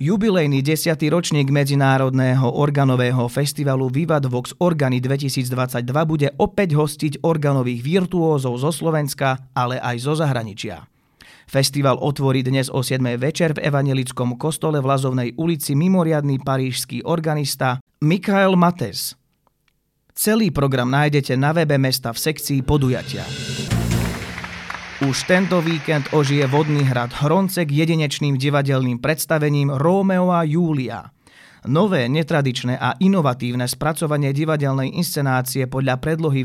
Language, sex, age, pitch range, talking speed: Slovak, male, 30-49, 130-160 Hz, 115 wpm